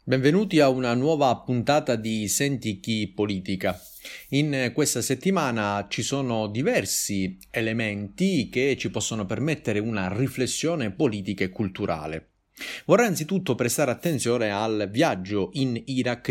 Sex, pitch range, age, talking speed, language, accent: male, 100-135 Hz, 30-49, 120 wpm, Italian, native